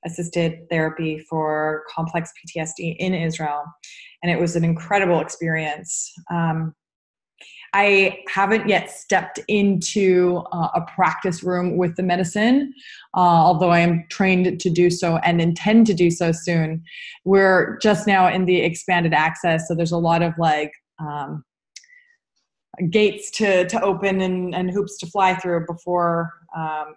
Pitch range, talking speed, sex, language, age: 165-200 Hz, 145 wpm, female, English, 20-39